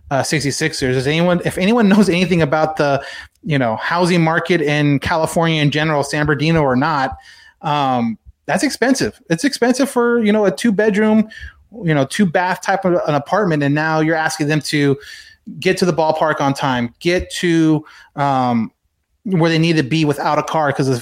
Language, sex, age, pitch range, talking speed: English, male, 30-49, 140-175 Hz, 185 wpm